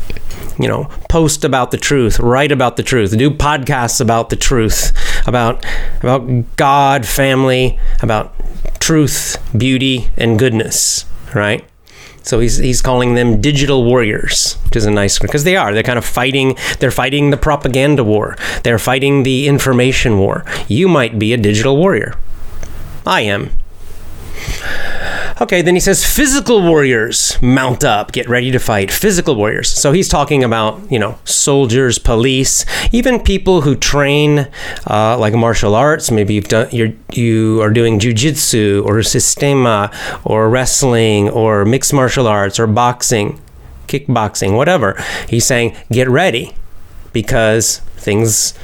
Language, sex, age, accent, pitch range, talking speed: English, male, 30-49, American, 105-140 Hz, 145 wpm